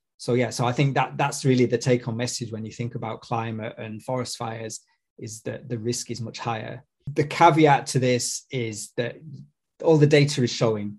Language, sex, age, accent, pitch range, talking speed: English, male, 20-39, British, 115-130 Hz, 210 wpm